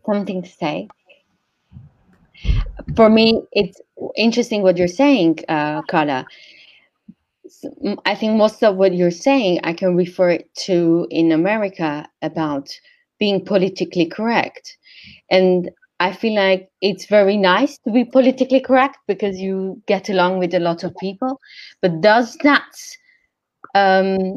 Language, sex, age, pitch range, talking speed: English, female, 20-39, 180-230 Hz, 135 wpm